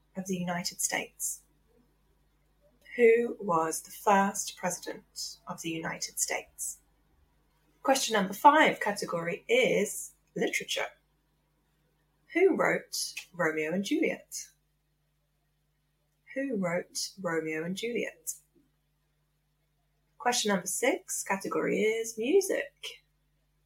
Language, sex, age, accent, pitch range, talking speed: English, female, 10-29, British, 155-230 Hz, 90 wpm